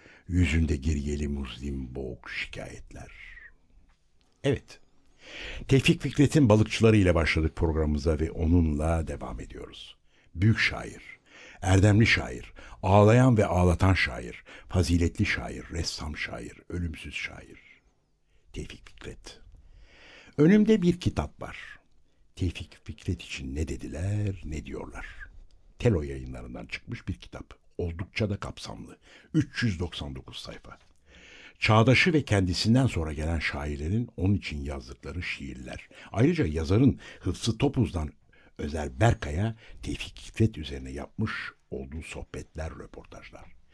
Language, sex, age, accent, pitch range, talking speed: Turkish, male, 60-79, native, 75-110 Hz, 105 wpm